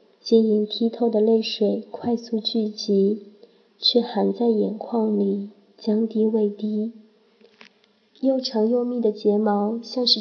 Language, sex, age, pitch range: Chinese, female, 20-39, 205-230 Hz